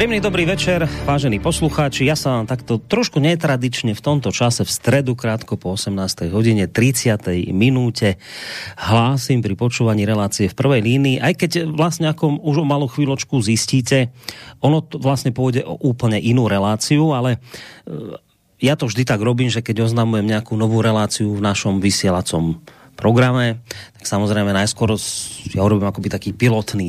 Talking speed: 155 wpm